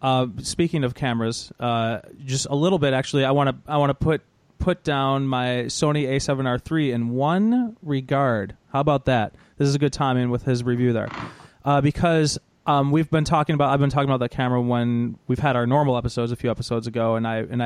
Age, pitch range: 30-49, 120-150 Hz